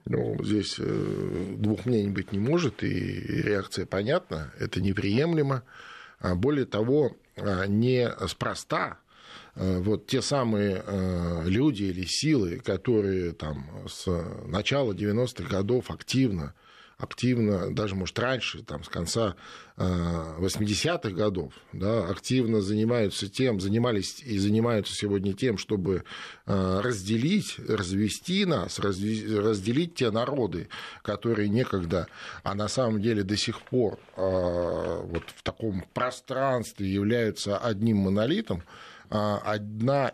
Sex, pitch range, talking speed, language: male, 95-115 Hz, 105 wpm, Russian